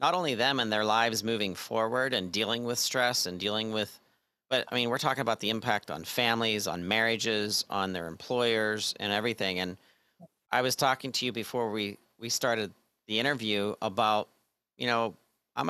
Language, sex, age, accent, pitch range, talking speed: English, male, 40-59, American, 105-125 Hz, 185 wpm